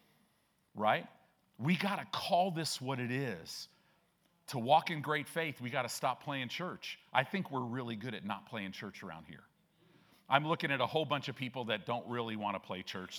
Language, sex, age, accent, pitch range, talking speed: English, male, 50-69, American, 125-185 Hz, 210 wpm